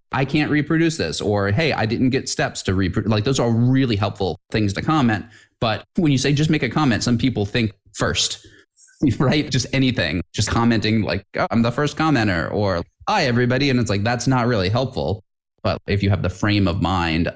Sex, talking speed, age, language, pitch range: male, 205 wpm, 20-39, English, 100-130 Hz